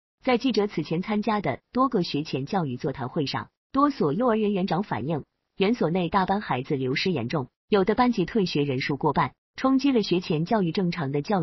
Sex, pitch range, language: female, 155-225 Hz, Chinese